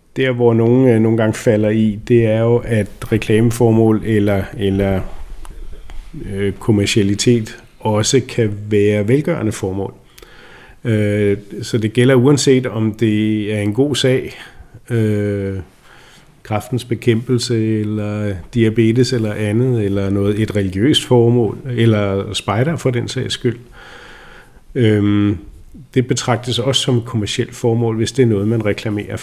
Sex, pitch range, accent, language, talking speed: male, 105-120 Hz, native, Danish, 130 wpm